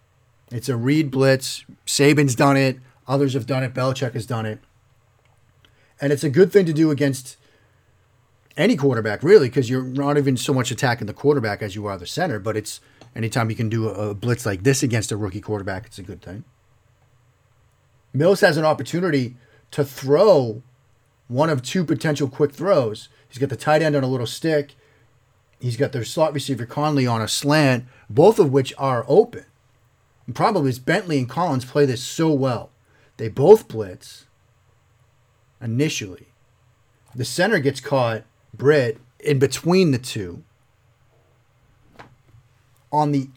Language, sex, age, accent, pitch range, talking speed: English, male, 30-49, American, 115-145 Hz, 165 wpm